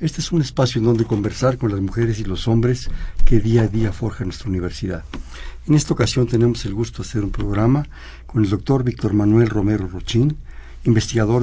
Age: 60-79